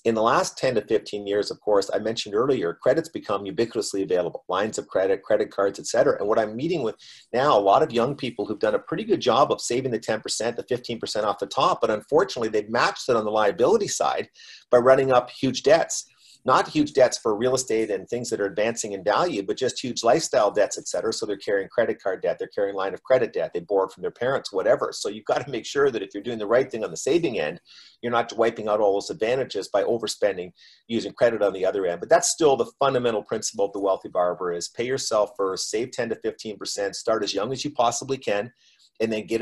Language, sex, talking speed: English, male, 245 wpm